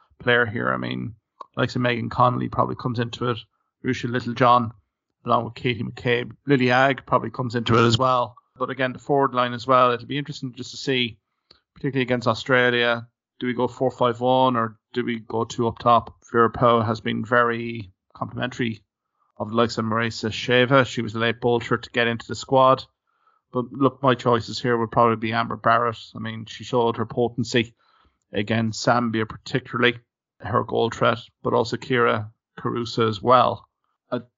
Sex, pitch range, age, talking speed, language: male, 115-125 Hz, 30-49, 185 wpm, English